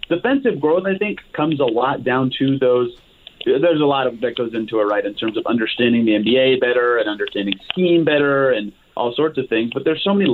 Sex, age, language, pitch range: male, 30-49, English, 125-150 Hz